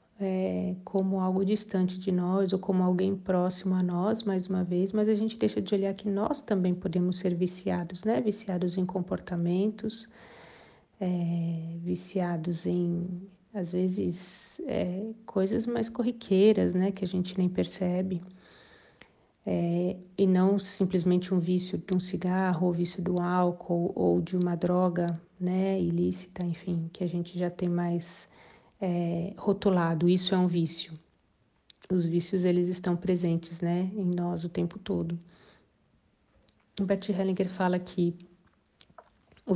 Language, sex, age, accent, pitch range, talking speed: Portuguese, female, 40-59, Brazilian, 175-195 Hz, 145 wpm